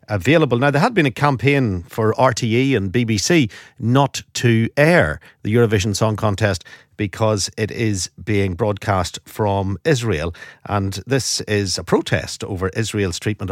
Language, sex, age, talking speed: English, male, 50-69, 145 wpm